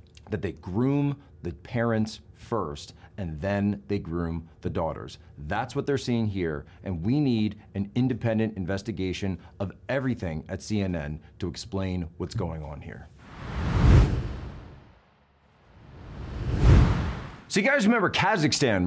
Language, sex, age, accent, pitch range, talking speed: English, male, 40-59, American, 95-125 Hz, 120 wpm